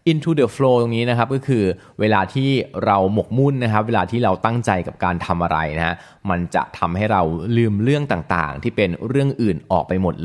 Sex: male